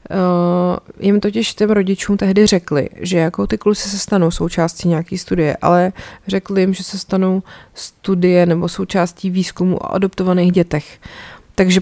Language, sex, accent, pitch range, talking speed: Czech, female, native, 165-190 Hz, 150 wpm